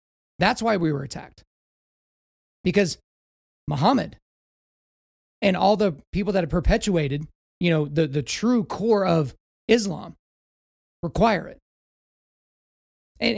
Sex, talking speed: male, 110 wpm